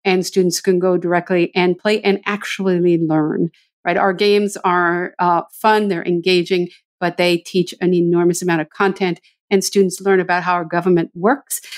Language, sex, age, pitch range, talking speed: English, female, 50-69, 175-200 Hz, 175 wpm